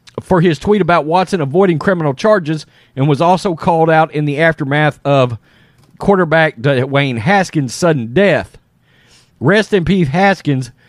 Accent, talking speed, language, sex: American, 145 wpm, English, male